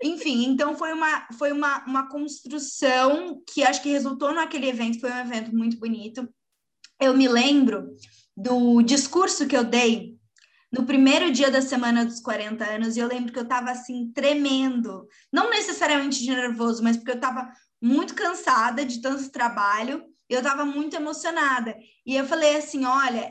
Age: 20-39